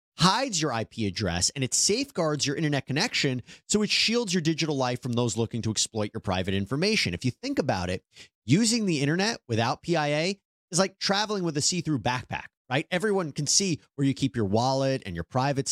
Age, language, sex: 30-49, English, male